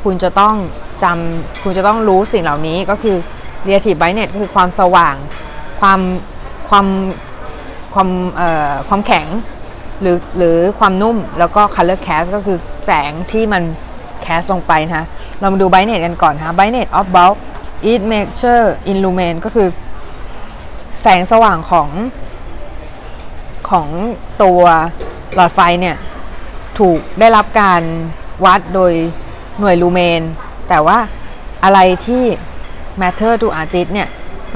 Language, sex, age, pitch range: Thai, female, 20-39, 170-205 Hz